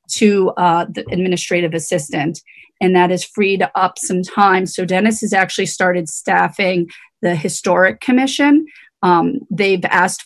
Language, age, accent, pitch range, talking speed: English, 30-49, American, 185-225 Hz, 140 wpm